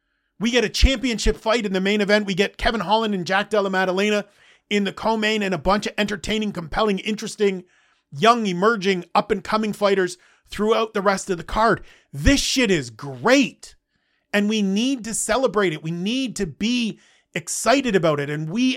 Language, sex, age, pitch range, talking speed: English, male, 40-59, 180-215 Hz, 180 wpm